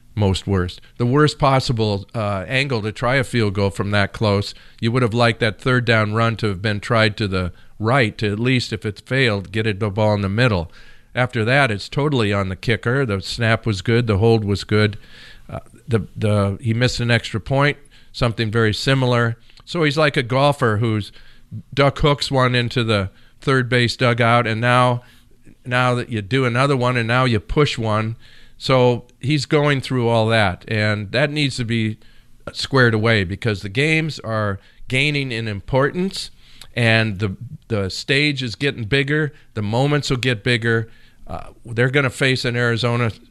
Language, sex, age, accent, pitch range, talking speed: English, male, 50-69, American, 110-130 Hz, 185 wpm